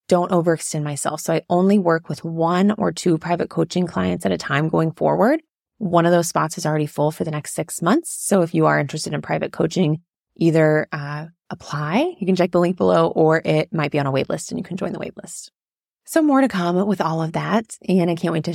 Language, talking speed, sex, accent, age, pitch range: English, 245 wpm, female, American, 20-39, 160-200 Hz